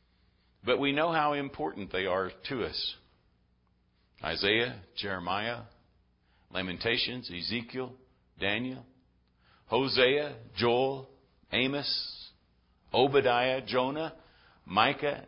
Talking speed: 80 wpm